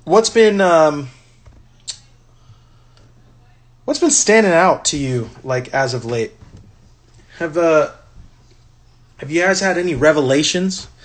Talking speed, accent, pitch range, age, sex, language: 115 wpm, American, 115-150 Hz, 30-49, male, English